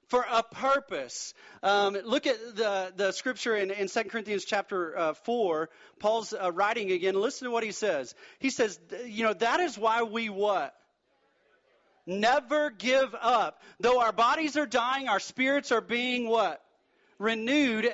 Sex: male